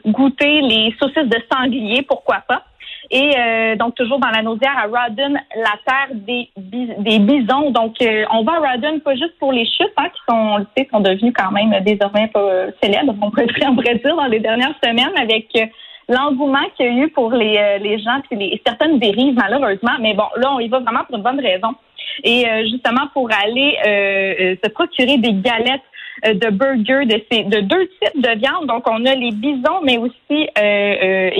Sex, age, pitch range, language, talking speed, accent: female, 30-49, 215-275 Hz, French, 210 wpm, Canadian